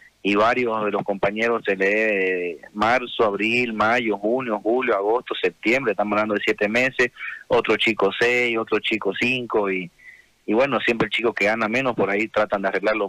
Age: 30-49